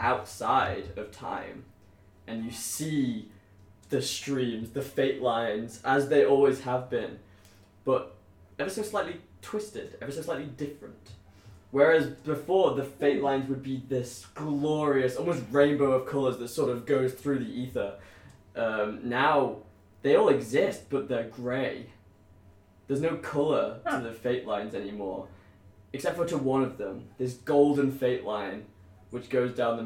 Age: 10-29